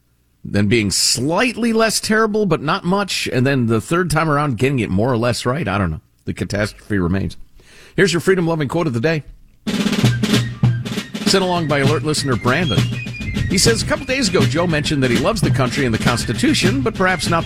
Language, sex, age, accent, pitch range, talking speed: English, male, 50-69, American, 100-160 Hz, 205 wpm